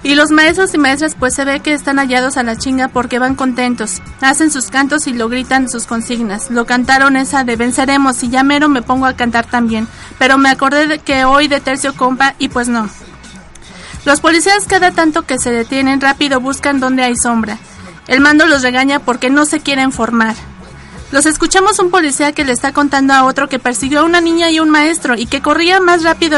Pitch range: 250-290 Hz